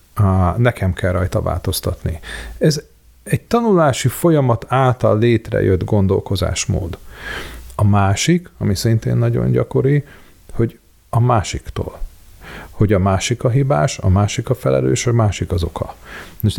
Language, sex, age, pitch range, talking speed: Hungarian, male, 40-59, 95-125 Hz, 125 wpm